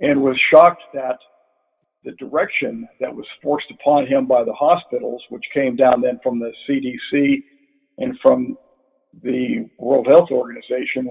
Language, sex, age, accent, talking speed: English, male, 50-69, American, 145 wpm